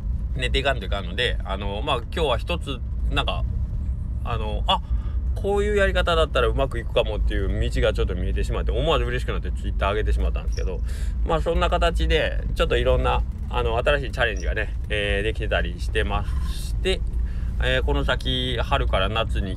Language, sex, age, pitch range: Japanese, male, 20-39, 70-105 Hz